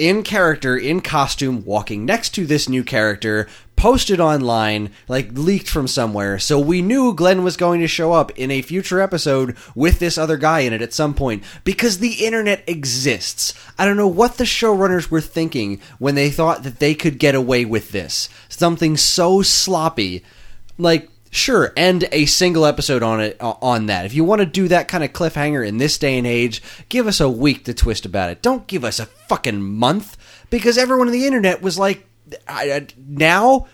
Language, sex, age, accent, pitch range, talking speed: English, male, 20-39, American, 125-190 Hz, 195 wpm